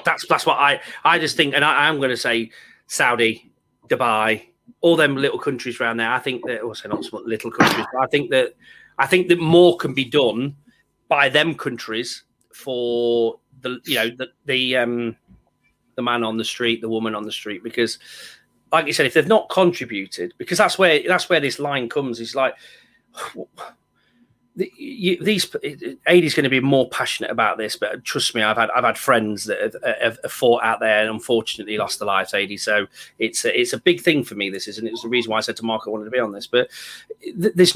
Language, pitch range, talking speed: English, 115-185 Hz, 220 wpm